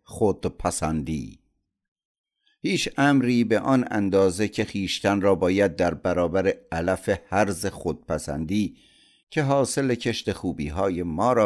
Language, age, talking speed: Persian, 50-69, 115 wpm